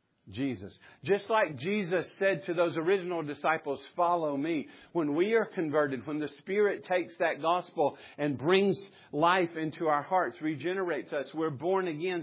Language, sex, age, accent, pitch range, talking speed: English, male, 50-69, American, 135-190 Hz, 155 wpm